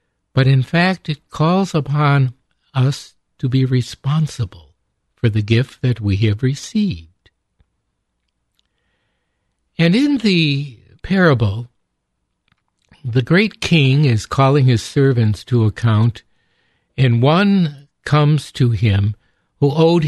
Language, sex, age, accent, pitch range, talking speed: English, male, 60-79, American, 110-150 Hz, 110 wpm